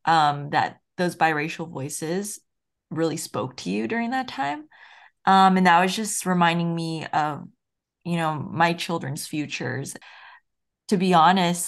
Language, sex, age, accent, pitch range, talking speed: English, female, 20-39, American, 155-185 Hz, 145 wpm